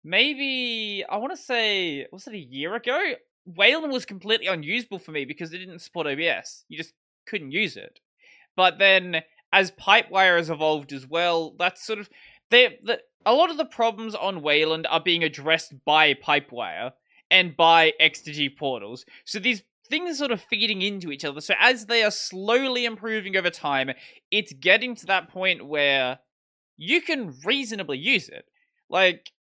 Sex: male